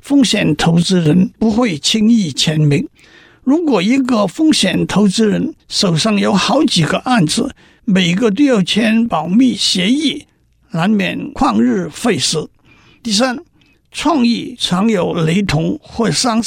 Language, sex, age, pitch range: Chinese, male, 50-69, 180-245 Hz